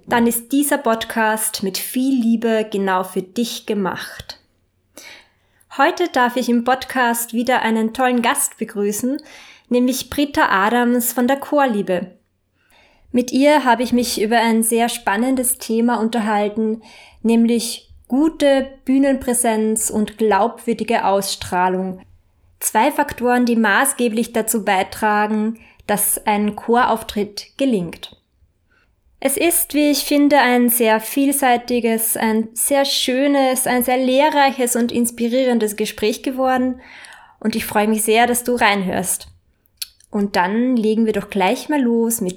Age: 20-39